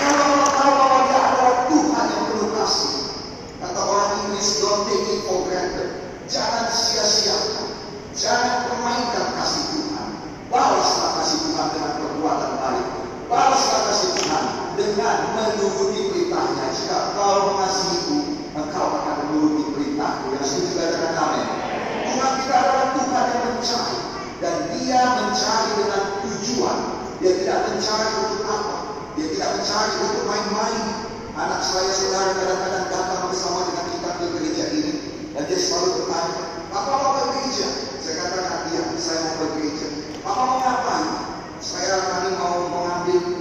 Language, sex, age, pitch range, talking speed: Indonesian, male, 40-59, 185-265 Hz, 125 wpm